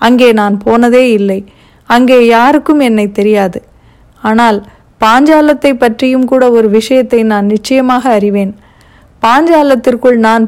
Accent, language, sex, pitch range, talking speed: native, Tamil, female, 220-255 Hz, 110 wpm